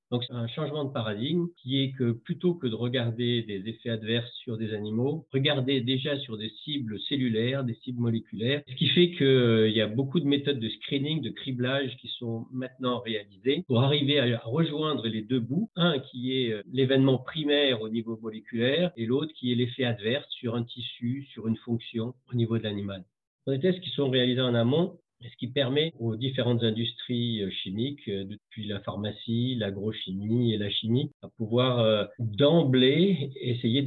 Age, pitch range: 50-69, 115-140 Hz